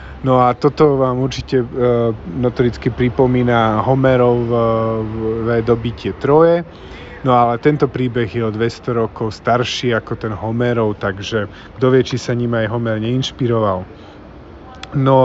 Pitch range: 110-130 Hz